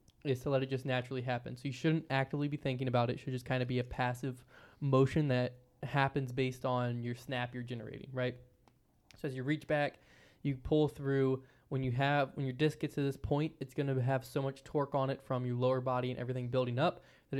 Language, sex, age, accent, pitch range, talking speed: English, male, 20-39, American, 125-140 Hz, 240 wpm